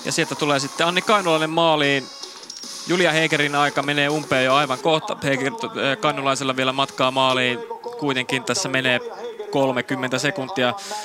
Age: 20-39